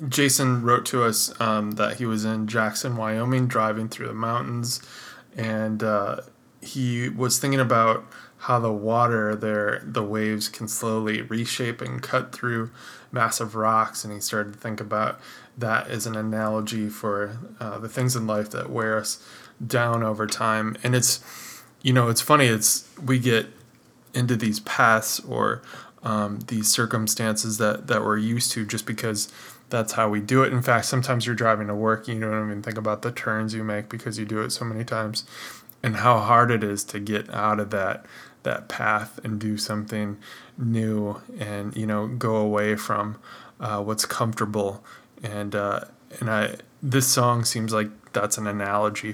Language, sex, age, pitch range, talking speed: English, male, 20-39, 105-120 Hz, 180 wpm